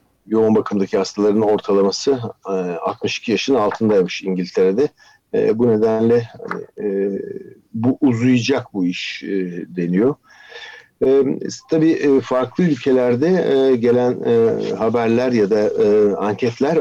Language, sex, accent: Turkish, male, native